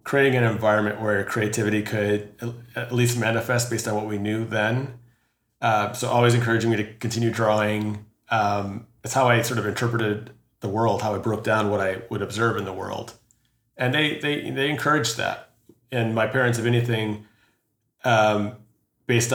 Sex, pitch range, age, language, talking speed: male, 105-120 Hz, 30-49, English, 175 wpm